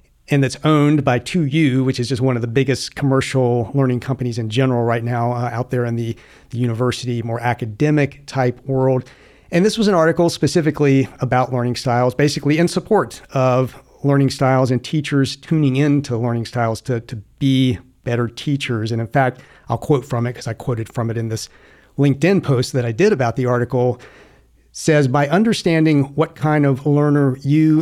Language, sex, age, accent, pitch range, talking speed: English, male, 50-69, American, 125-145 Hz, 190 wpm